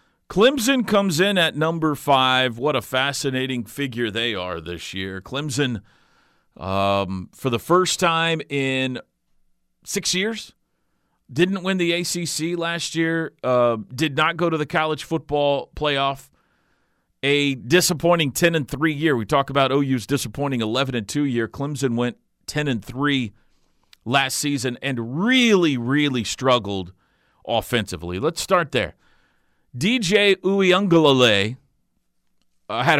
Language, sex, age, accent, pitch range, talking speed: English, male, 40-59, American, 120-170 Hz, 130 wpm